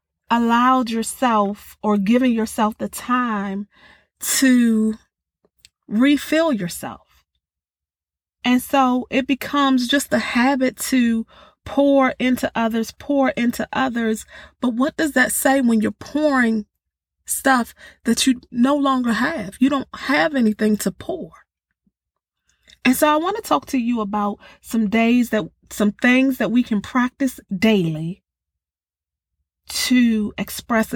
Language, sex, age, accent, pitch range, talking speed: English, female, 30-49, American, 210-255 Hz, 125 wpm